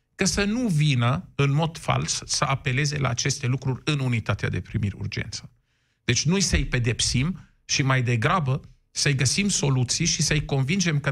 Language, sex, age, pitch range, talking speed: Romanian, male, 50-69, 120-145 Hz, 165 wpm